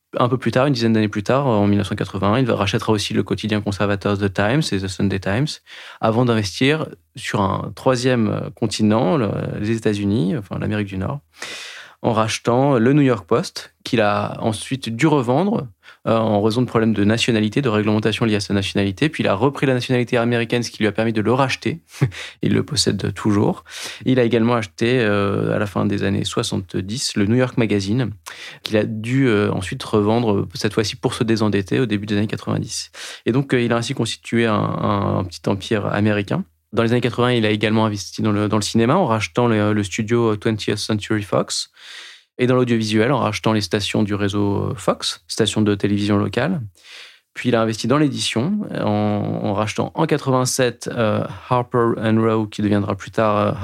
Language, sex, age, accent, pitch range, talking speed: French, male, 20-39, French, 105-125 Hz, 200 wpm